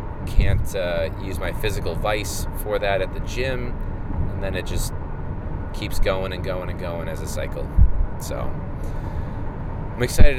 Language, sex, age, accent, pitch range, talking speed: English, male, 20-39, American, 90-110 Hz, 155 wpm